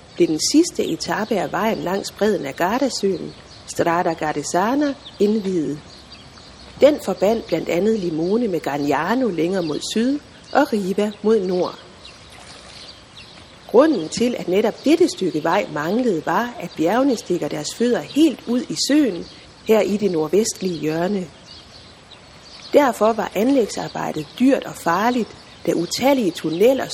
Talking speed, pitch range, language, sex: 130 wpm, 170-250 Hz, Danish, female